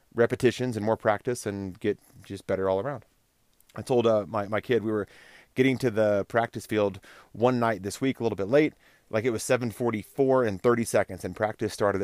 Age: 30-49